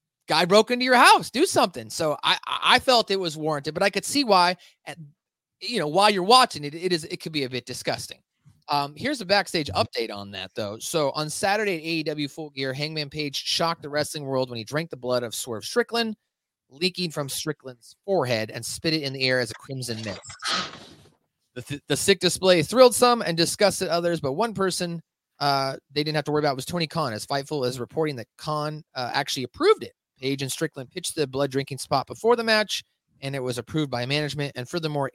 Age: 30-49